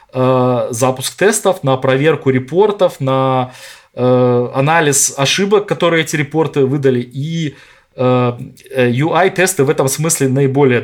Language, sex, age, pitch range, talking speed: Russian, male, 20-39, 125-145 Hz, 110 wpm